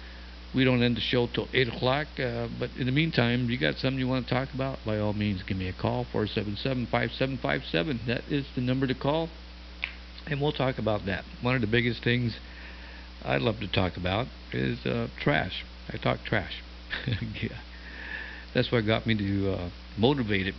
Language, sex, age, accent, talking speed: English, male, 60-79, American, 205 wpm